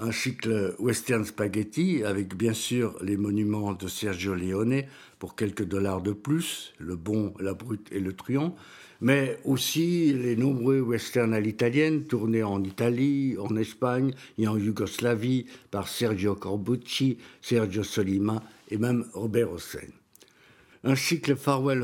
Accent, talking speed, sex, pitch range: French, 140 wpm, male, 105-135 Hz